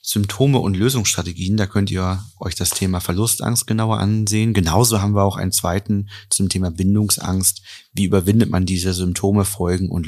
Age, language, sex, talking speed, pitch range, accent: 30-49, German, male, 165 wpm, 90-110 Hz, German